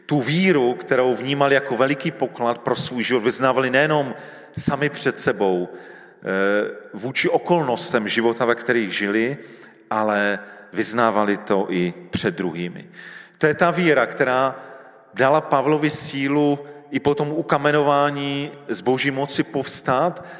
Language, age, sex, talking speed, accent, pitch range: Czech, 40-59, male, 125 wpm, native, 110-145 Hz